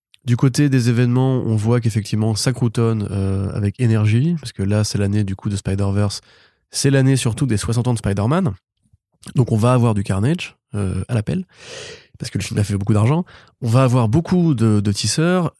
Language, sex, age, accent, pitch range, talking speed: French, male, 20-39, French, 105-125 Hz, 205 wpm